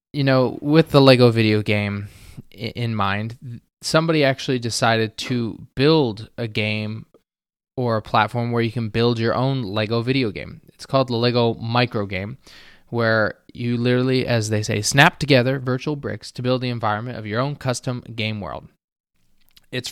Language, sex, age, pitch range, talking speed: English, male, 20-39, 110-135 Hz, 165 wpm